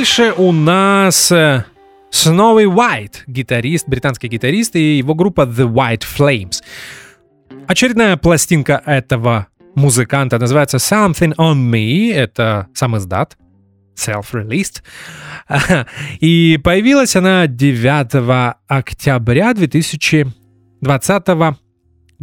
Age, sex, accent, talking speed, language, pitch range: 20-39, male, native, 85 wpm, Russian, 120-170 Hz